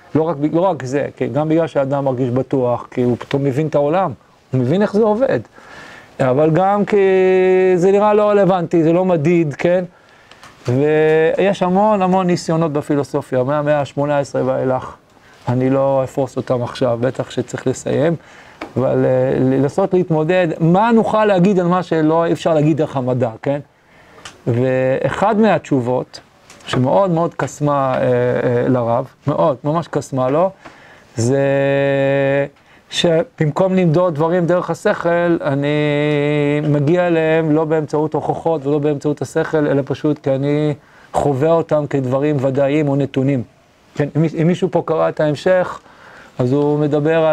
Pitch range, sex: 135-170 Hz, male